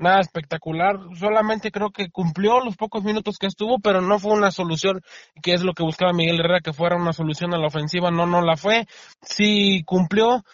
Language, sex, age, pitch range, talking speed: Spanish, male, 20-39, 170-200 Hz, 205 wpm